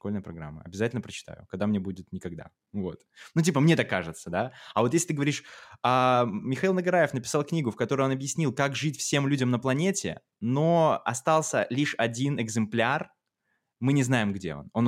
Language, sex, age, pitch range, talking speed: Russian, male, 20-39, 110-150 Hz, 180 wpm